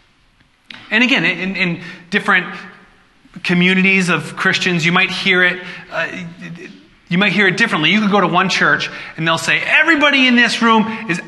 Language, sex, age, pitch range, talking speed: English, male, 30-49, 140-195 Hz, 150 wpm